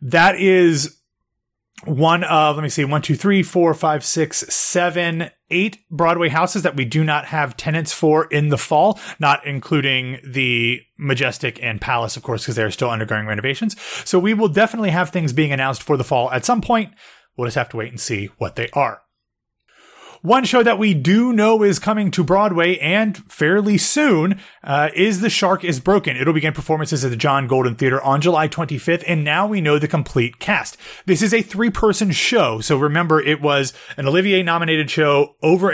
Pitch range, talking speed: 130-180 Hz, 195 wpm